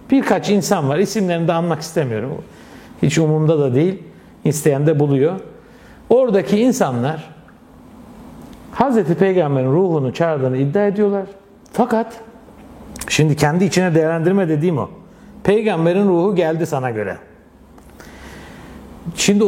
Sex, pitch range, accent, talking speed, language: male, 140-200 Hz, native, 110 wpm, Turkish